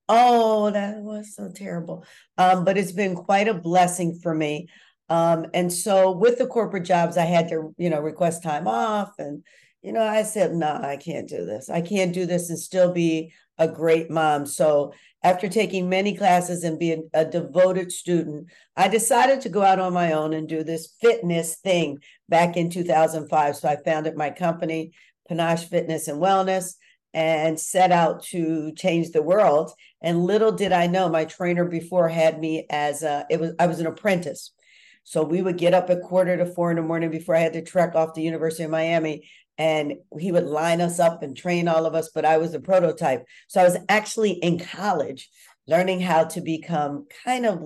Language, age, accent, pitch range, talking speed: English, 50-69, American, 160-185 Hz, 200 wpm